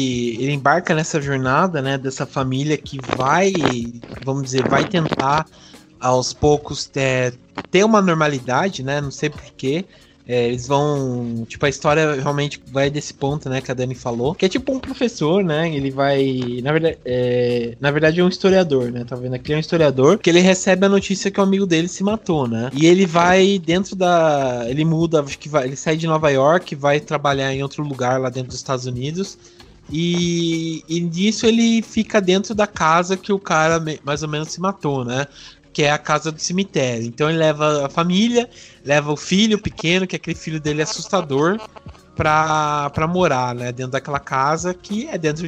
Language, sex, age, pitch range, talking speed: Portuguese, male, 20-39, 135-175 Hz, 190 wpm